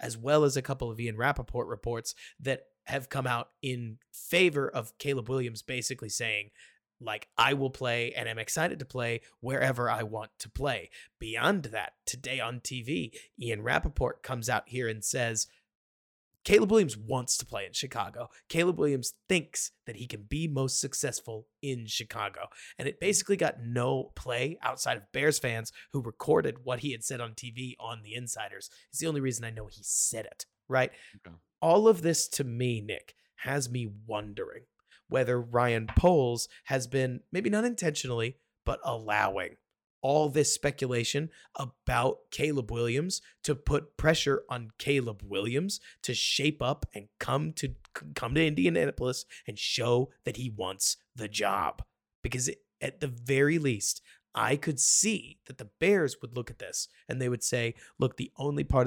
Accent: American